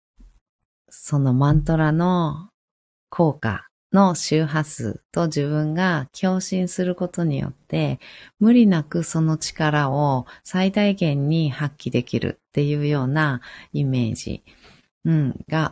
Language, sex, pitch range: Japanese, female, 125-185 Hz